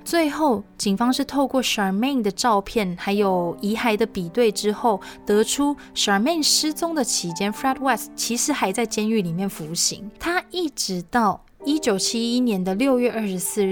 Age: 20-39